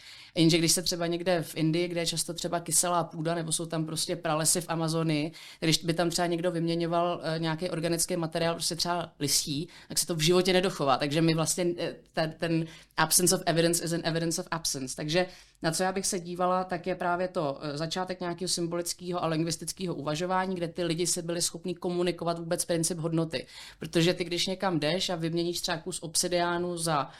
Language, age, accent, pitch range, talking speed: Czech, 30-49, native, 155-175 Hz, 195 wpm